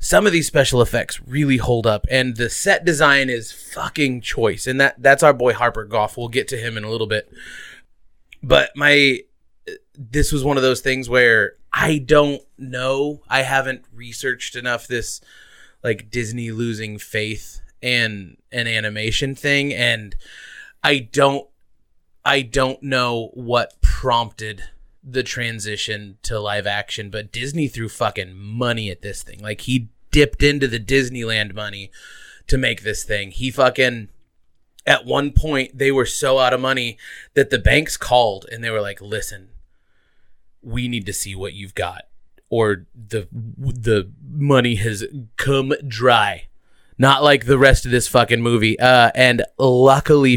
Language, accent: English, American